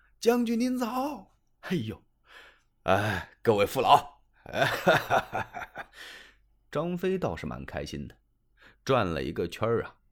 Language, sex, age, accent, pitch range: Chinese, male, 30-49, native, 105-170 Hz